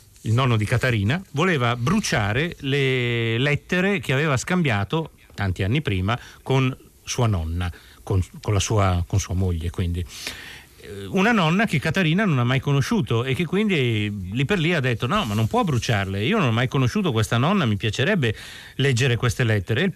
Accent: native